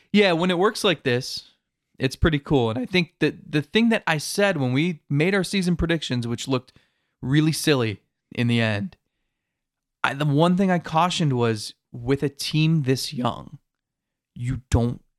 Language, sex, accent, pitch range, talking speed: English, male, American, 120-165 Hz, 180 wpm